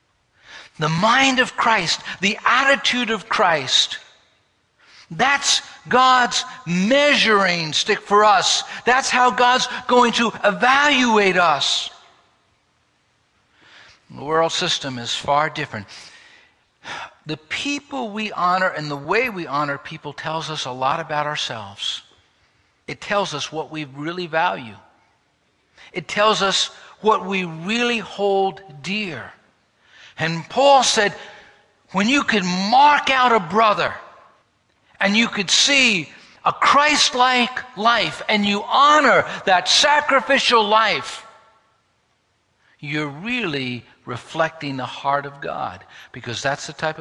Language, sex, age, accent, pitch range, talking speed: English, male, 60-79, American, 150-240 Hz, 115 wpm